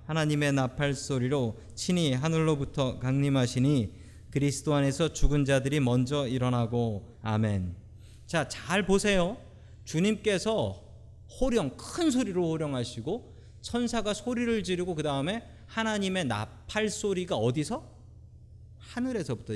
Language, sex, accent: Korean, male, native